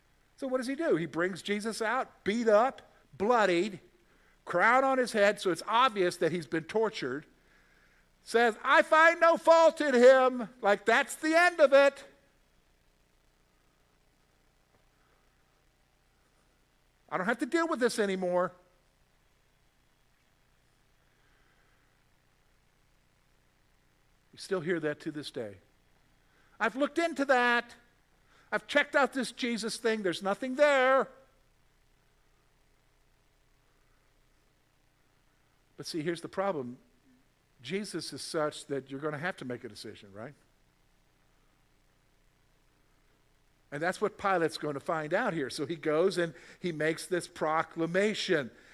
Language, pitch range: English, 150-235 Hz